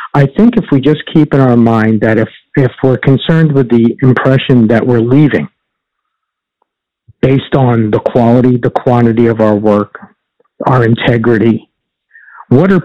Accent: American